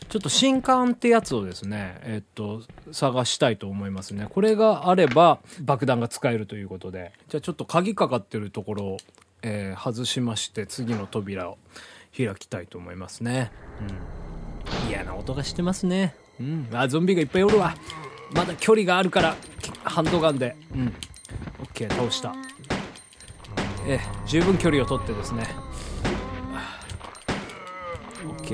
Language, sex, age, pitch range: Japanese, male, 20-39, 100-155 Hz